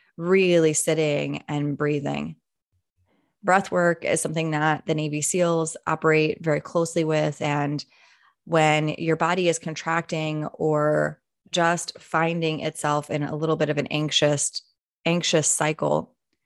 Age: 20-39